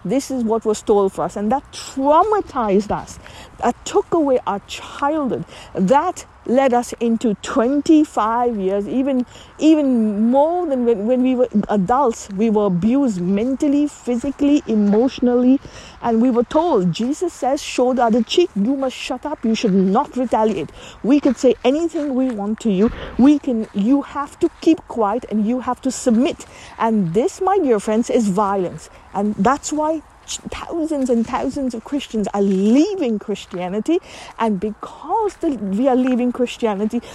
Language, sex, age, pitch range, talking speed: English, female, 50-69, 210-285 Hz, 160 wpm